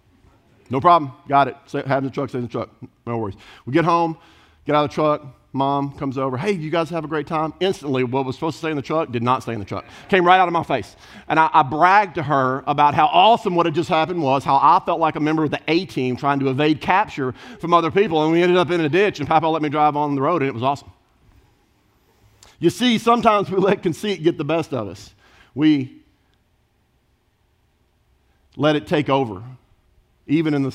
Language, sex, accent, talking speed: English, male, American, 235 wpm